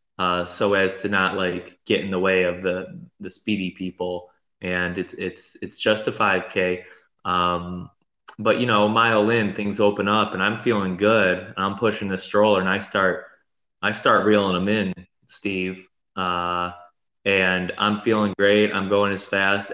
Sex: male